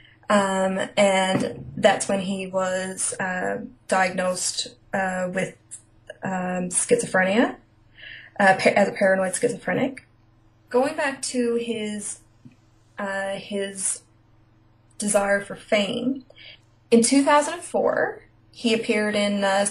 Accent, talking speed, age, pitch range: American, 100 wpm, 20-39, 190-225 Hz